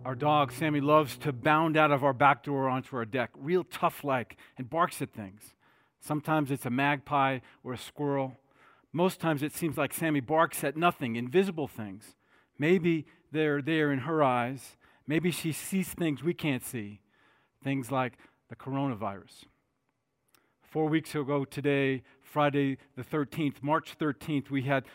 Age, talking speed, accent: 50-69, 160 wpm, American